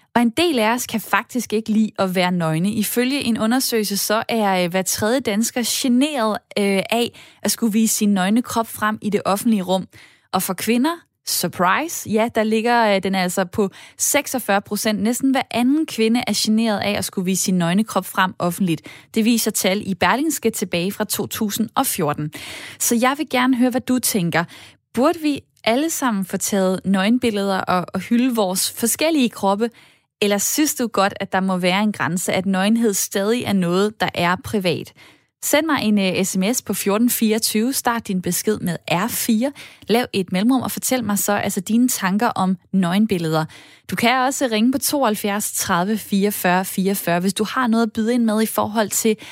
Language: Danish